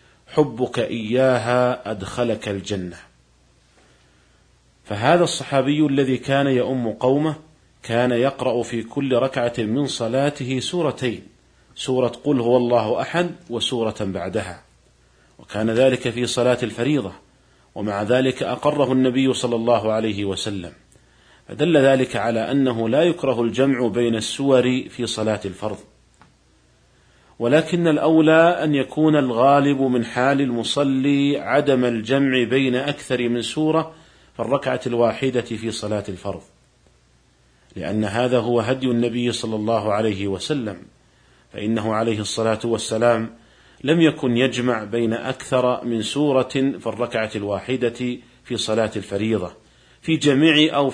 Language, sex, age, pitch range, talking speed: Arabic, male, 40-59, 110-135 Hz, 115 wpm